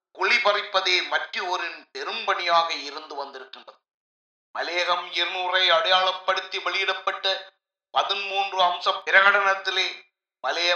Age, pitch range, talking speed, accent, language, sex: 30-49, 175-190 Hz, 55 wpm, native, Tamil, male